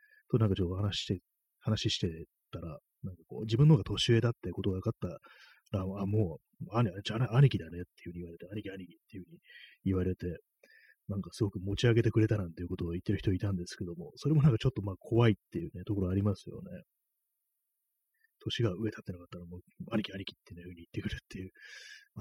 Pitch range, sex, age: 90-115 Hz, male, 30-49